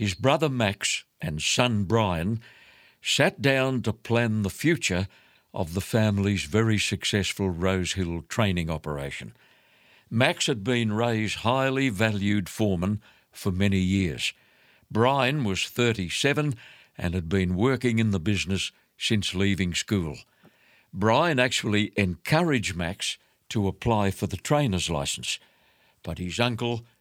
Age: 60-79